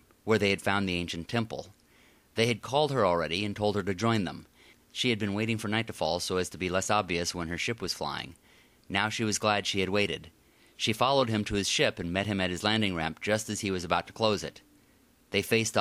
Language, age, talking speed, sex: English, 30-49, 255 wpm, male